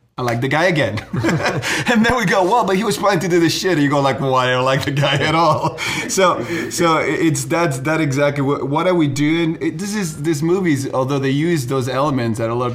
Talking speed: 255 wpm